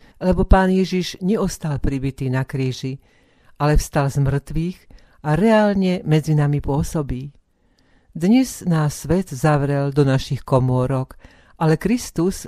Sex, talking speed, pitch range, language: female, 120 wpm, 135-165 Hz, Slovak